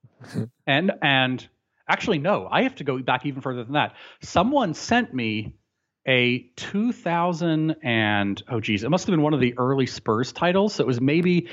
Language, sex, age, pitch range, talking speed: English, male, 30-49, 105-145 Hz, 175 wpm